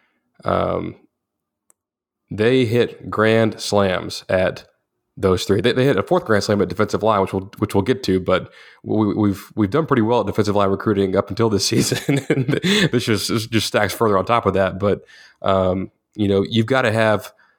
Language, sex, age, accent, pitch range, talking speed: English, male, 20-39, American, 95-110 Hz, 200 wpm